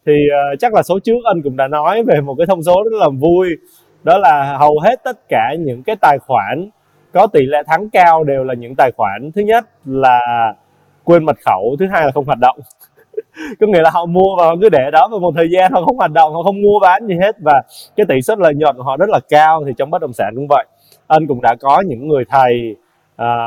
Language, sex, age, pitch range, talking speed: Vietnamese, male, 20-39, 130-175 Hz, 255 wpm